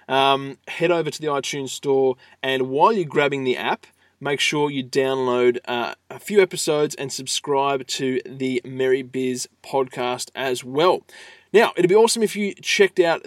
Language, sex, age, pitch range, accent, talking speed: English, male, 20-39, 135-185 Hz, Australian, 170 wpm